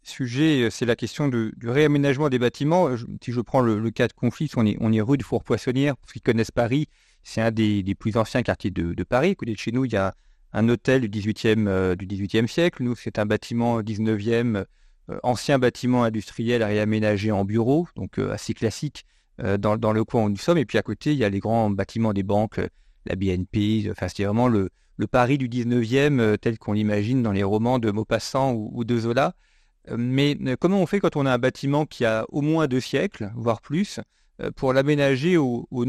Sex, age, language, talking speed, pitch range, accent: male, 40-59, French, 220 wpm, 110-135 Hz, French